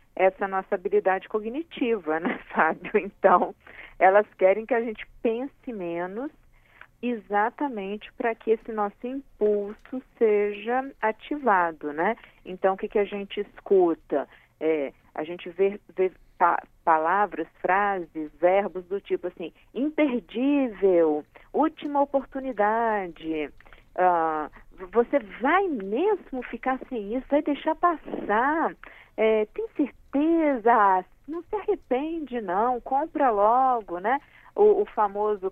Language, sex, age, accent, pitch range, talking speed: Portuguese, female, 50-69, Brazilian, 185-255 Hz, 120 wpm